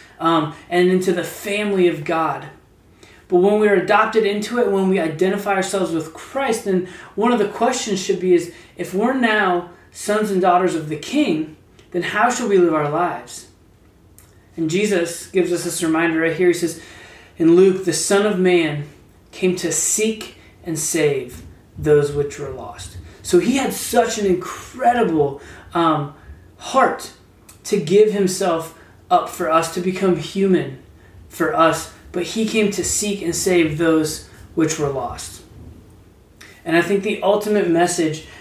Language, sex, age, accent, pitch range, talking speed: English, male, 20-39, American, 150-190 Hz, 160 wpm